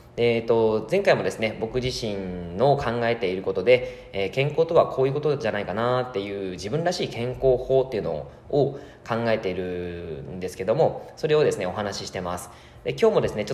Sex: male